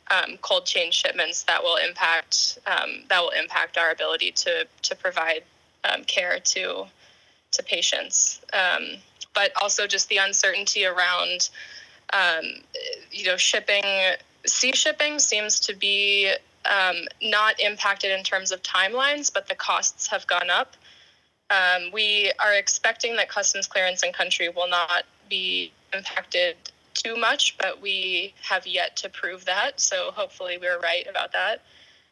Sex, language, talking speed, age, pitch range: female, English, 145 wpm, 10-29, 180-210 Hz